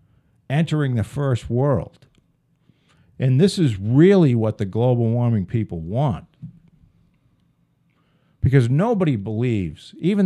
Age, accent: 50-69, American